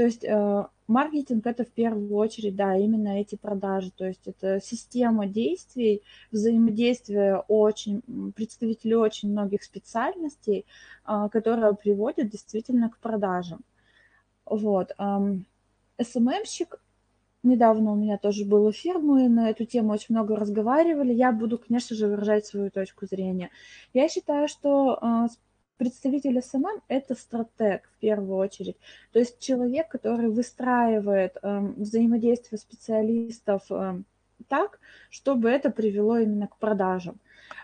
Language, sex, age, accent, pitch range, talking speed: Russian, female, 20-39, native, 210-250 Hz, 120 wpm